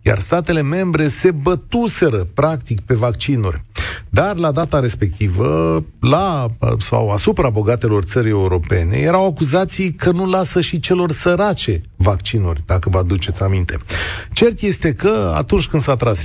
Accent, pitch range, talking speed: native, 105-155 Hz, 135 wpm